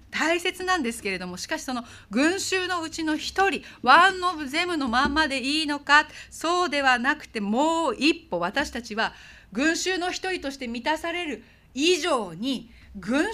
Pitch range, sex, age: 185-305 Hz, female, 40-59